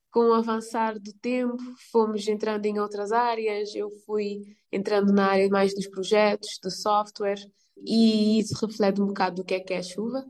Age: 20-39